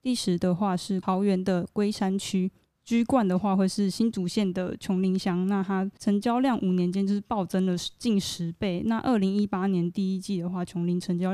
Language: Chinese